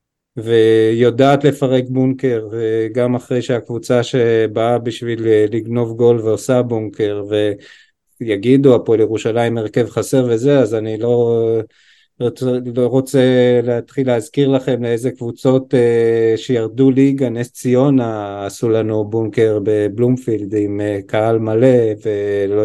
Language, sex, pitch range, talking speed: Hebrew, male, 115-135 Hz, 105 wpm